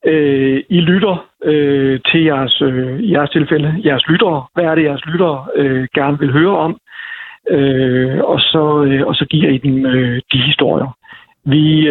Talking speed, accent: 130 wpm, native